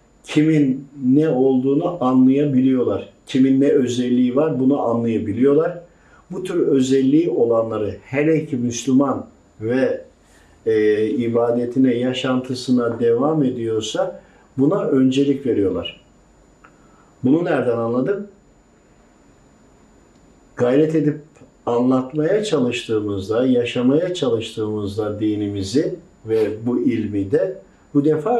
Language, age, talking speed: Turkish, 50-69, 90 wpm